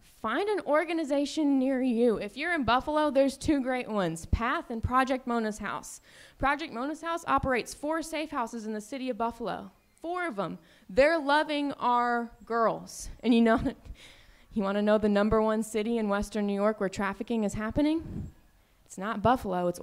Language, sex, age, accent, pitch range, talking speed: English, female, 20-39, American, 195-245 Hz, 180 wpm